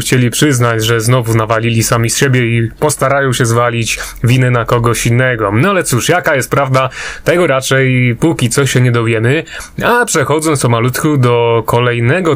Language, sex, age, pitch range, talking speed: Polish, male, 30-49, 125-150 Hz, 170 wpm